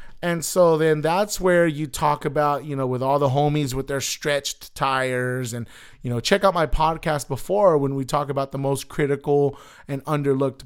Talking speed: 195 wpm